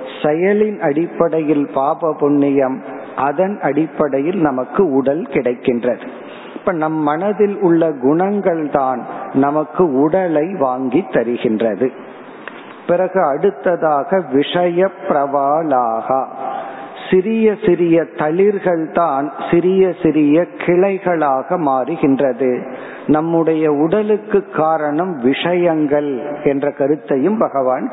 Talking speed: 60 wpm